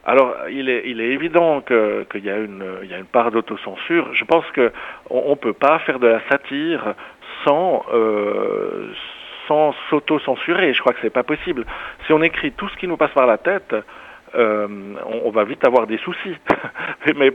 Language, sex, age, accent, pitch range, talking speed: French, male, 50-69, French, 115-150 Hz, 200 wpm